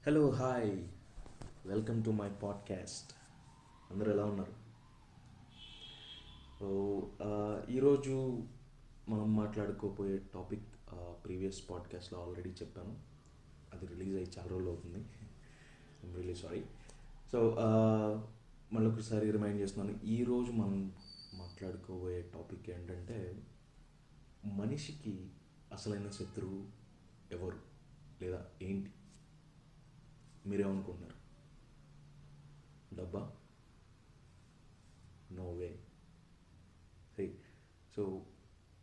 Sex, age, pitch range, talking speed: male, 20-39, 90-115 Hz, 75 wpm